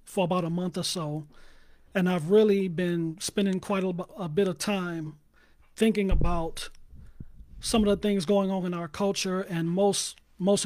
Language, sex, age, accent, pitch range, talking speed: English, male, 40-59, American, 170-200 Hz, 170 wpm